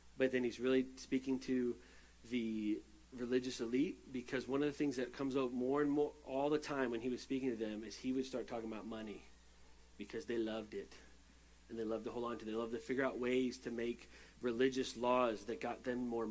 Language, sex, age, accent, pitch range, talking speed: English, male, 30-49, American, 115-135 Hz, 230 wpm